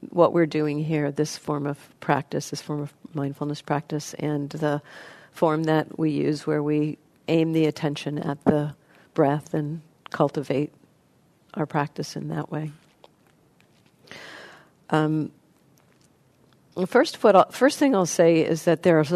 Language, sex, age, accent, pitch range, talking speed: English, female, 50-69, American, 150-175 Hz, 140 wpm